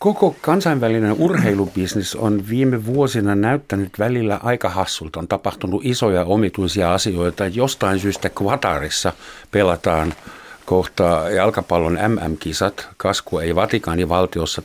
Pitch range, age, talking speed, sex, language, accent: 80-105 Hz, 60-79, 100 wpm, male, Finnish, native